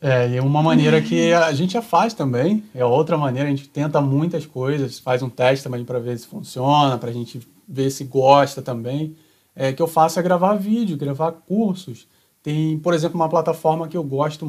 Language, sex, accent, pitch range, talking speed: Portuguese, male, Brazilian, 135-175 Hz, 210 wpm